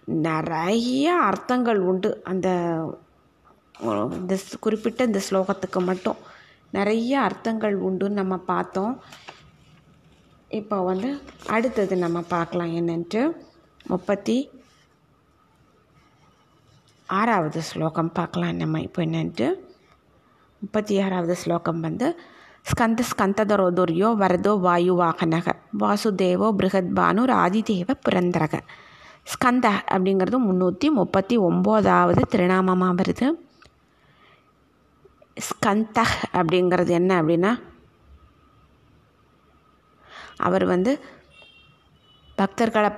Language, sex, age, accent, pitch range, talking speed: Tamil, female, 20-39, native, 180-220 Hz, 70 wpm